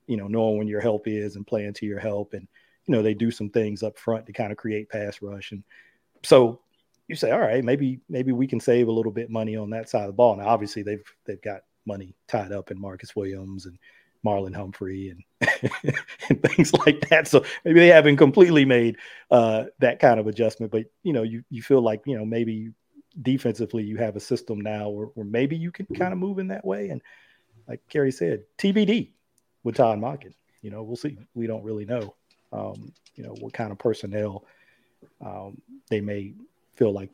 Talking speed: 215 wpm